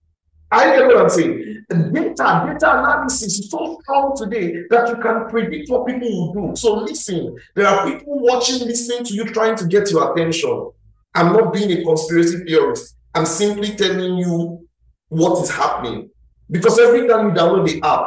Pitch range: 165-230 Hz